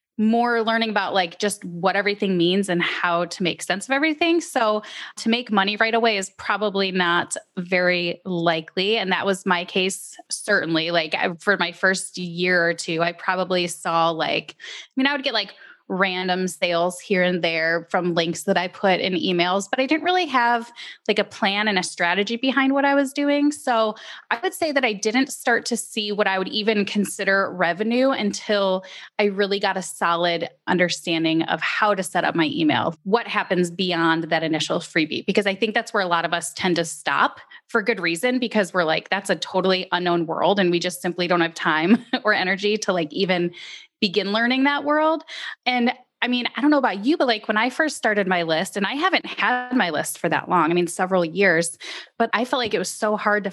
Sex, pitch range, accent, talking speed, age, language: female, 175-230 Hz, American, 215 wpm, 20-39, English